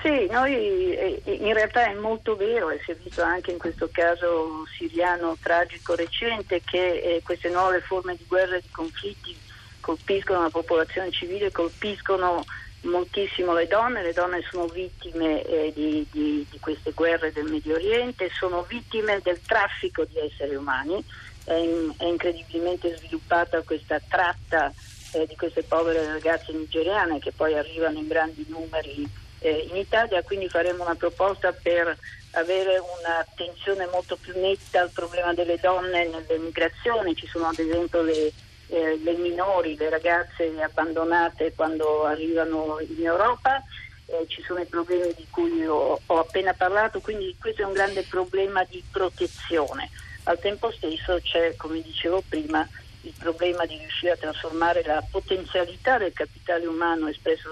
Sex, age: female, 40-59